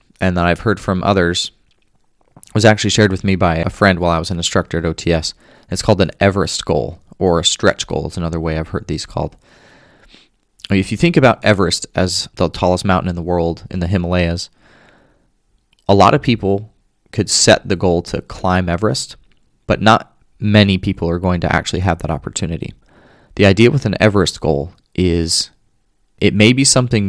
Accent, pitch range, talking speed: American, 85-105 Hz, 190 wpm